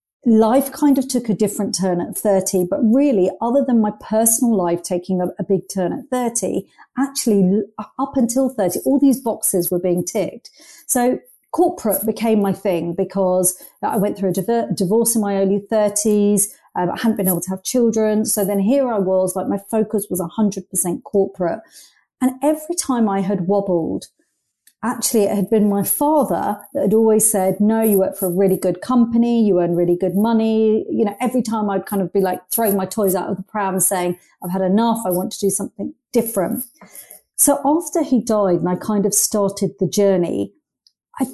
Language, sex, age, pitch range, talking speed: English, female, 40-59, 190-230 Hz, 195 wpm